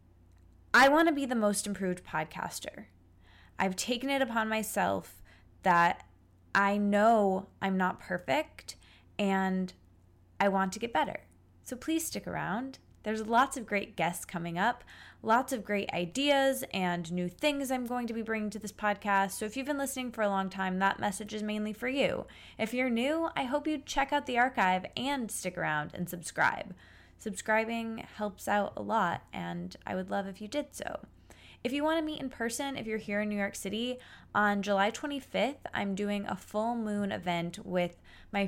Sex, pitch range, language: female, 180-240 Hz, English